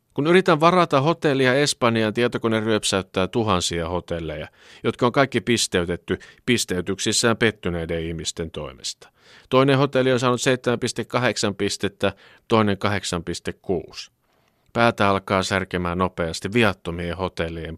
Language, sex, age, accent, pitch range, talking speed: Finnish, male, 50-69, native, 90-130 Hz, 105 wpm